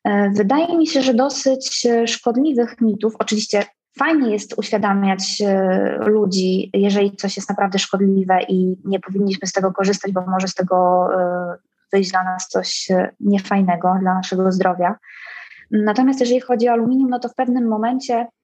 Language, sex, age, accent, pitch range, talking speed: Polish, female, 20-39, native, 195-225 Hz, 145 wpm